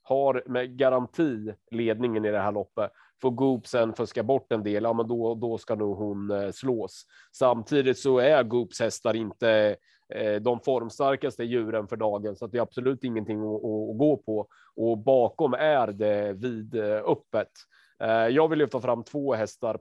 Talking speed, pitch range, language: 170 wpm, 110-130 Hz, Swedish